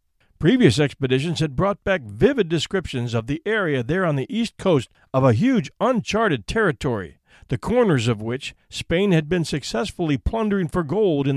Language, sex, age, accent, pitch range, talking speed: English, male, 50-69, American, 130-195 Hz, 170 wpm